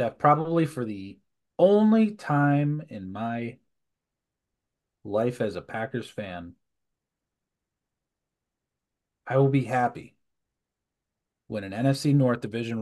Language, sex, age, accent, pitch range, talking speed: English, male, 30-49, American, 115-165 Hz, 105 wpm